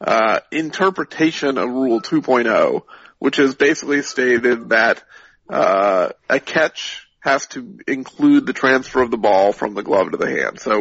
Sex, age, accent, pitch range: male, 40-59, American, 130-145 Hz